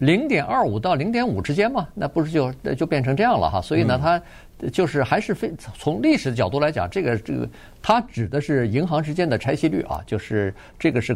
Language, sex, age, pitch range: Chinese, male, 50-69, 115-150 Hz